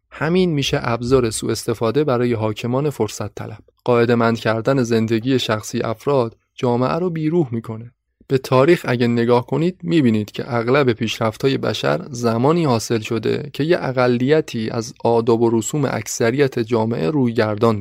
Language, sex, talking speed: Persian, male, 140 wpm